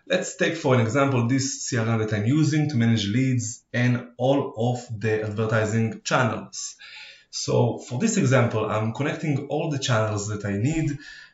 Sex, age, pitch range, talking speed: male, 20-39, 110-140 Hz, 165 wpm